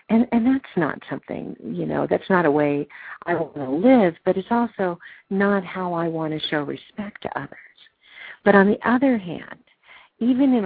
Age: 50-69